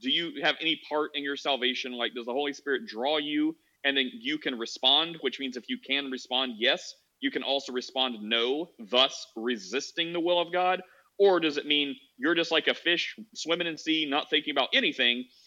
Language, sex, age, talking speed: English, male, 30-49, 210 wpm